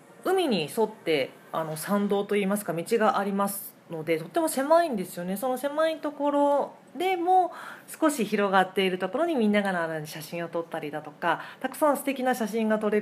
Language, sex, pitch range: Japanese, female, 170-230 Hz